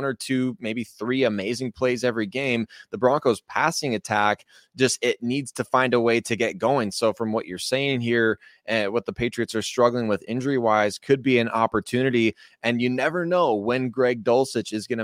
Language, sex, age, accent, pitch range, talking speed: English, male, 20-39, American, 110-125 Hz, 200 wpm